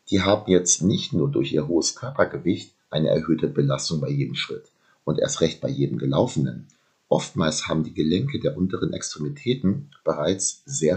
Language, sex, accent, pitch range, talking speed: German, male, German, 80-100 Hz, 165 wpm